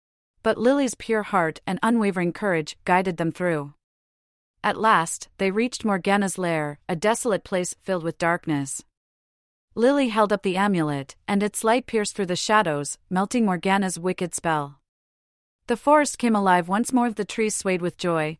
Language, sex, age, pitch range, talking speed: English, female, 30-49, 165-215 Hz, 160 wpm